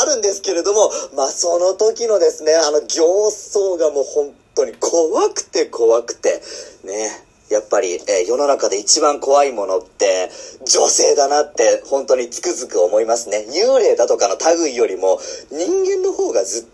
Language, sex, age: Japanese, male, 40-59